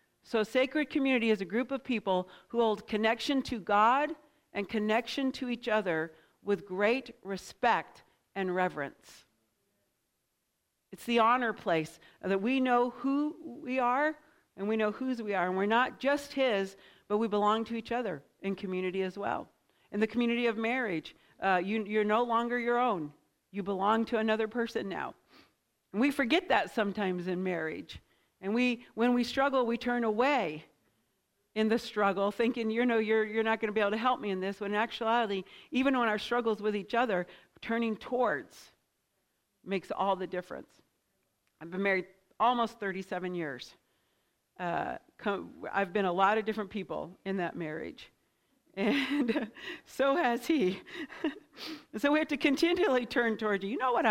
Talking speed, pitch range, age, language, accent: 170 wpm, 195-245 Hz, 50-69, English, American